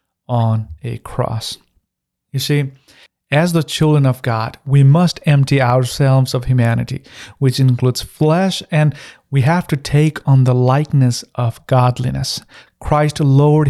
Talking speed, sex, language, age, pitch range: 135 wpm, male, English, 40-59, 130-160 Hz